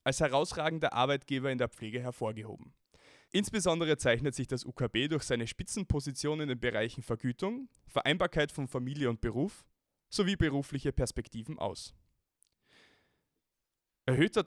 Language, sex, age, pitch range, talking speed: German, male, 20-39, 120-155 Hz, 120 wpm